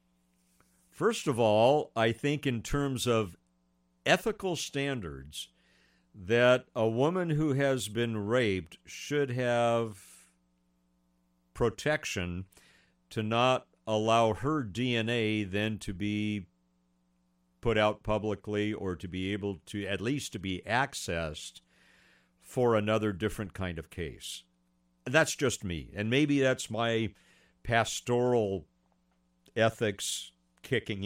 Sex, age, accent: male, 50-69, American